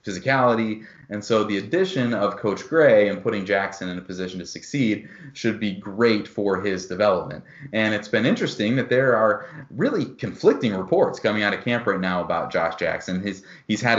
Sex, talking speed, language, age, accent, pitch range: male, 190 wpm, English, 30-49, American, 95-110 Hz